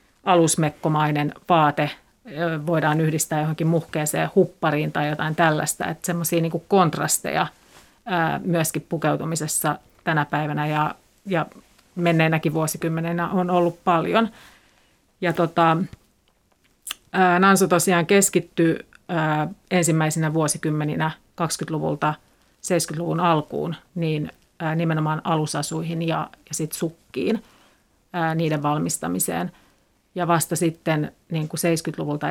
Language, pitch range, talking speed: Finnish, 155-170 Hz, 90 wpm